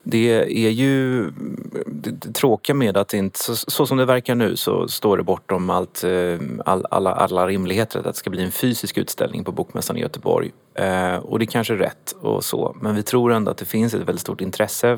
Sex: male